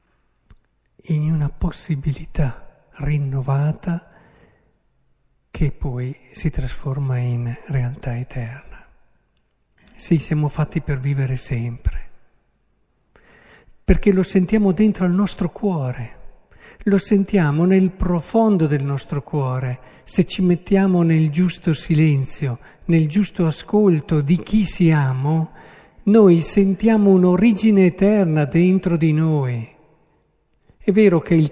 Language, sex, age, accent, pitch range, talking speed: Italian, male, 50-69, native, 145-200 Hz, 105 wpm